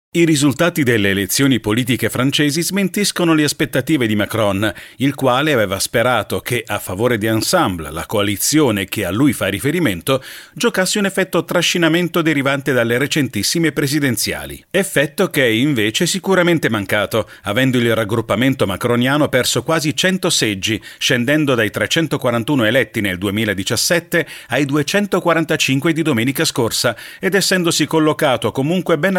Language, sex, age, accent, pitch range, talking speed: Italian, male, 40-59, native, 120-165 Hz, 135 wpm